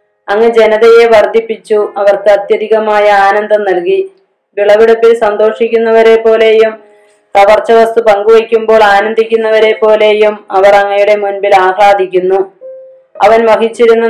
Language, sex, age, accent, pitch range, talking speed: Malayalam, female, 20-39, native, 200-225 Hz, 85 wpm